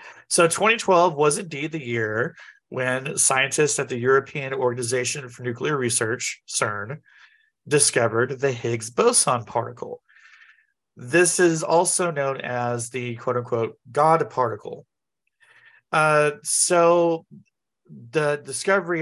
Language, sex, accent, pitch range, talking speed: English, male, American, 125-170 Hz, 105 wpm